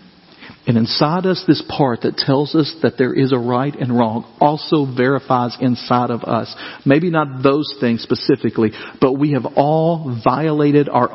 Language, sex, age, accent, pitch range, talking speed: English, male, 50-69, American, 135-195 Hz, 165 wpm